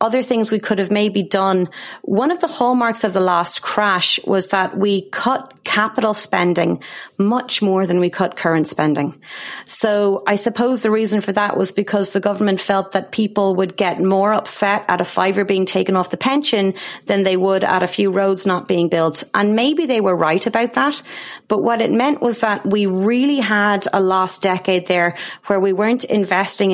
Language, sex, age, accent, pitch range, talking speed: English, female, 30-49, Irish, 185-215 Hz, 195 wpm